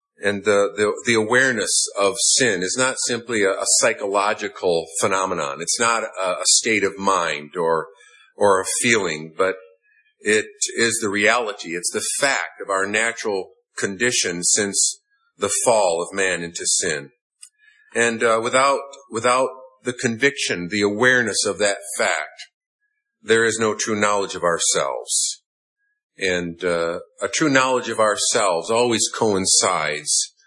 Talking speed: 140 wpm